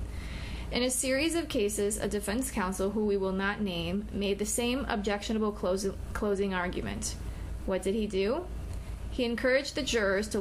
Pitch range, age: 185-230 Hz, 20-39